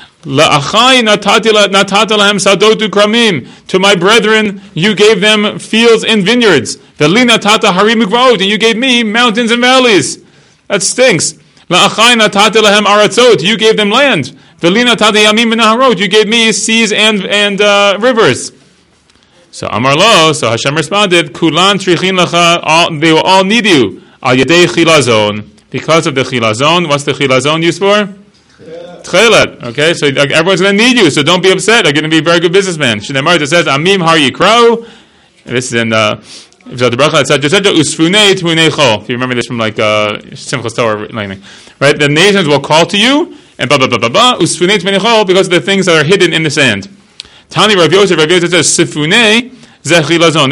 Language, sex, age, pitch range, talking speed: English, male, 30-49, 150-215 Hz, 135 wpm